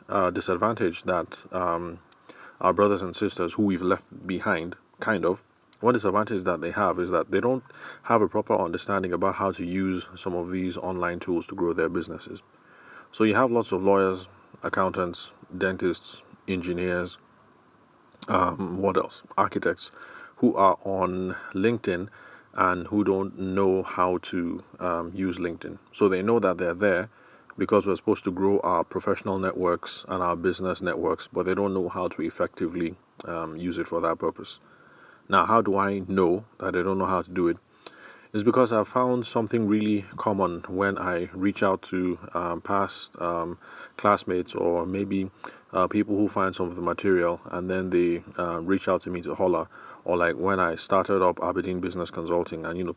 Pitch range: 90-100 Hz